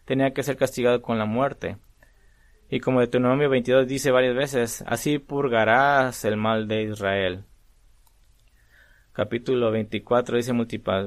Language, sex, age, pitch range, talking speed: English, male, 20-39, 120-145 Hz, 130 wpm